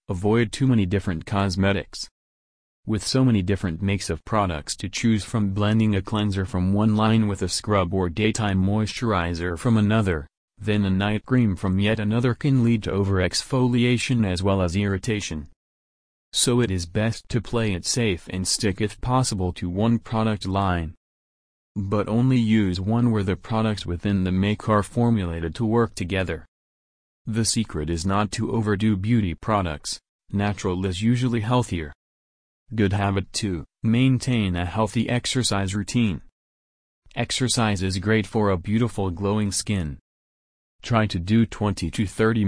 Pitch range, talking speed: 90-110 Hz, 155 wpm